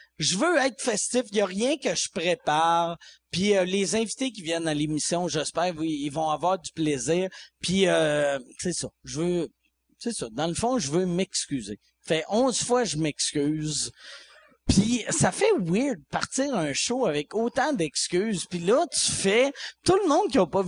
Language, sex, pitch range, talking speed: French, male, 155-245 Hz, 185 wpm